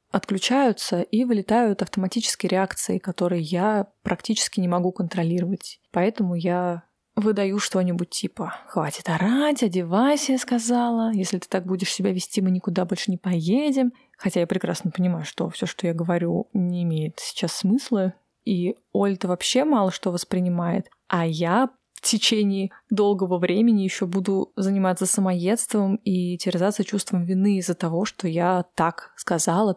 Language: Russian